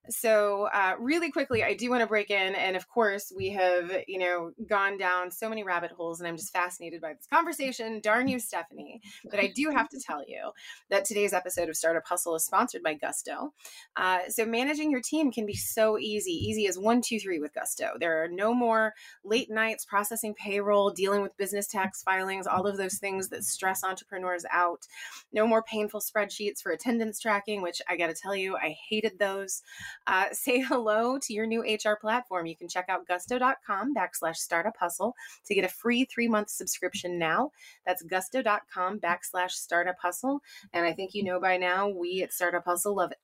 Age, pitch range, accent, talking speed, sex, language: 20-39, 180-225 Hz, American, 200 wpm, female, English